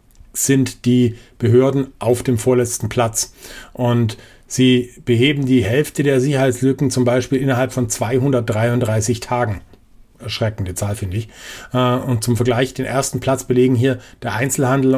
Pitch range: 115-135 Hz